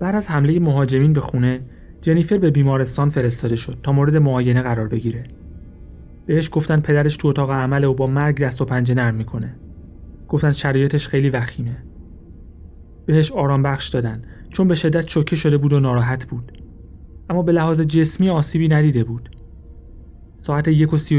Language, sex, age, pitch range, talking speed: Persian, male, 30-49, 115-150 Hz, 155 wpm